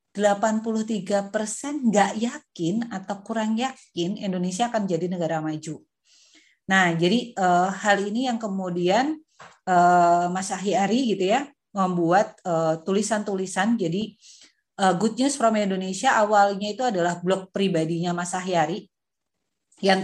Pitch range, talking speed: 180-225 Hz, 120 wpm